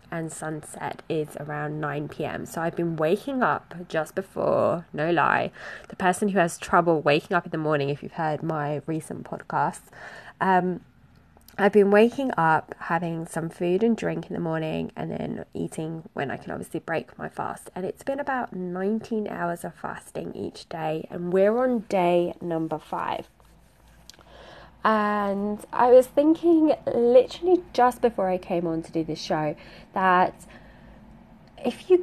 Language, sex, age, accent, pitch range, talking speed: English, female, 20-39, British, 160-210 Hz, 165 wpm